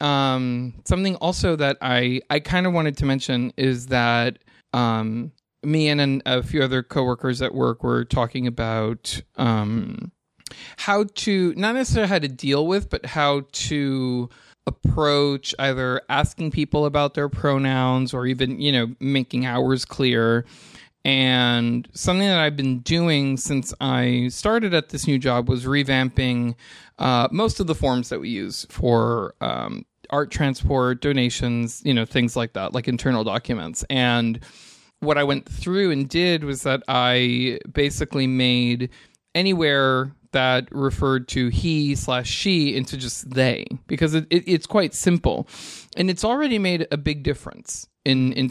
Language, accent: English, American